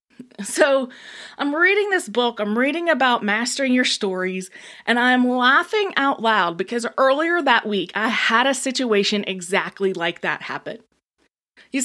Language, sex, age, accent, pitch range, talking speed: English, female, 20-39, American, 195-265 Hz, 145 wpm